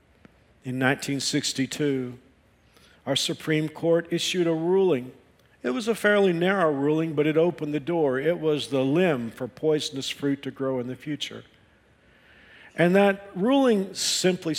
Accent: American